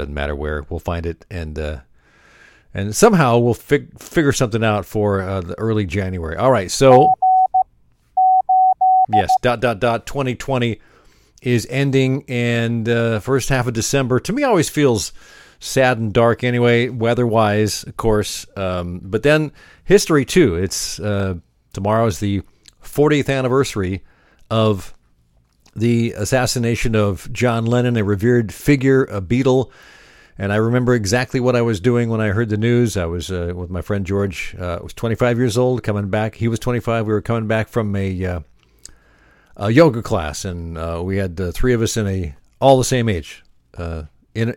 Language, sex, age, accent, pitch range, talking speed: English, male, 50-69, American, 95-125 Hz, 170 wpm